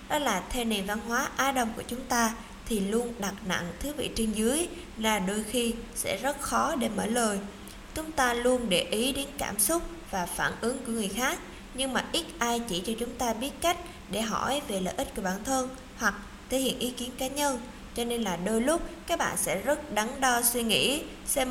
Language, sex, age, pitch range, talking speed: Vietnamese, female, 20-39, 205-260 Hz, 225 wpm